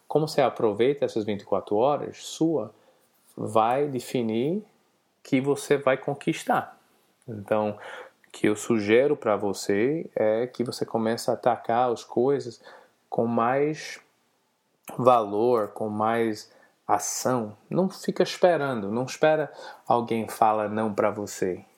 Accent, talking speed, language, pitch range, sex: Brazilian, 120 wpm, Portuguese, 110-145 Hz, male